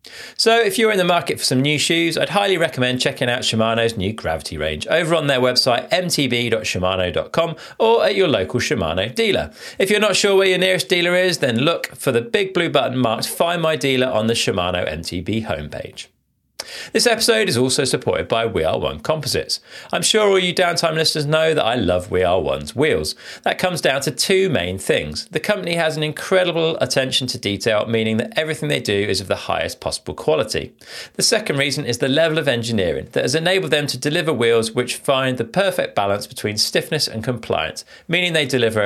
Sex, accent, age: male, British, 40-59